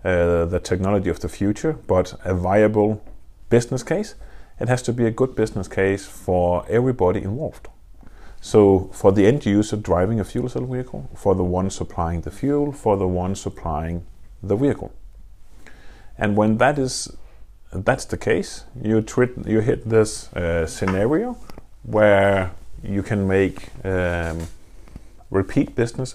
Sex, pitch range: male, 90-110 Hz